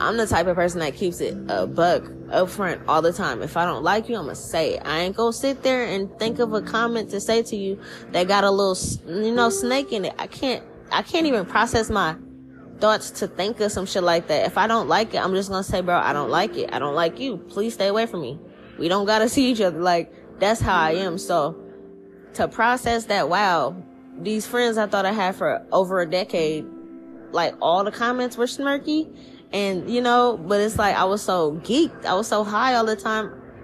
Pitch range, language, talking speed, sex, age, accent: 175-225 Hz, English, 245 wpm, female, 10-29, American